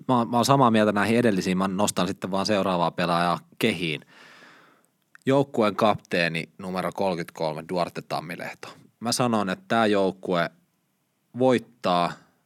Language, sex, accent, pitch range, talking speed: Finnish, male, native, 85-110 Hz, 120 wpm